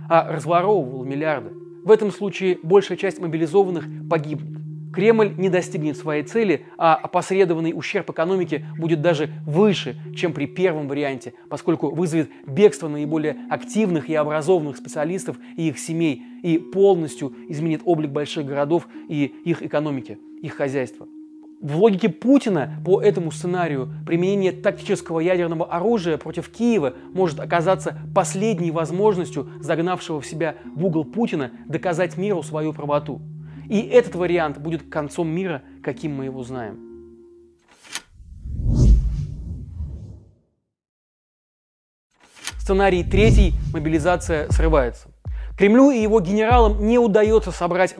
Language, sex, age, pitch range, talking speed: Russian, male, 30-49, 150-185 Hz, 120 wpm